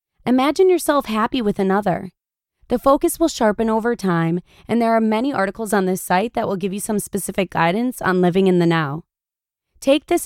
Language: English